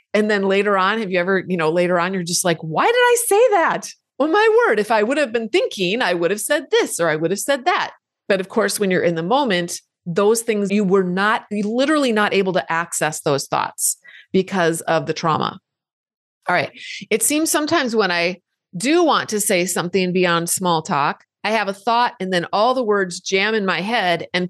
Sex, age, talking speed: female, 30-49, 230 wpm